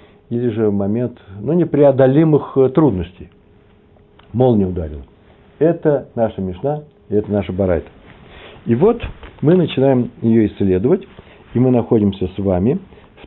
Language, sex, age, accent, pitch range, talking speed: Russian, male, 60-79, native, 100-130 Hz, 120 wpm